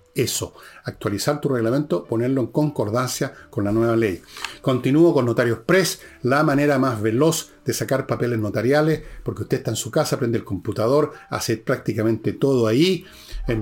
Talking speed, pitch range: 165 wpm, 115-145 Hz